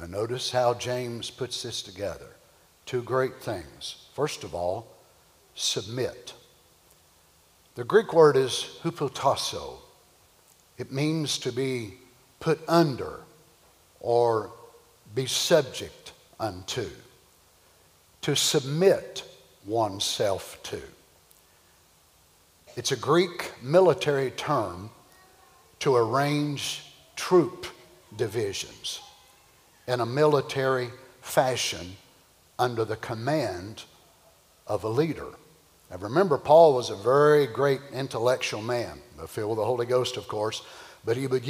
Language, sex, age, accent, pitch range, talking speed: English, male, 60-79, American, 115-145 Hz, 105 wpm